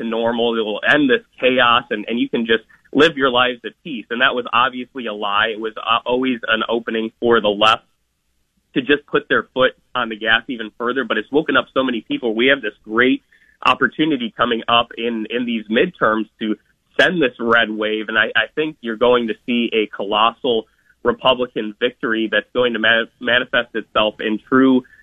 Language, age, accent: English, 30-49, American